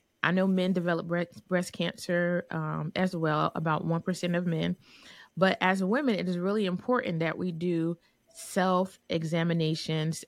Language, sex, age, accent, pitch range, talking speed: English, female, 30-49, American, 160-190 Hz, 140 wpm